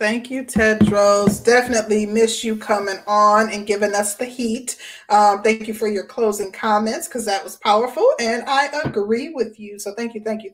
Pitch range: 195-225 Hz